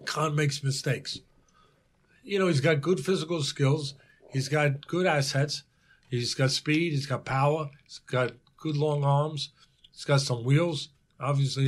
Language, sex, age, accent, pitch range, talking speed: English, male, 50-69, American, 140-190 Hz, 155 wpm